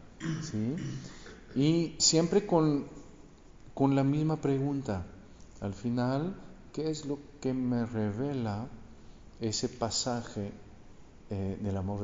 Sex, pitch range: male, 100-135 Hz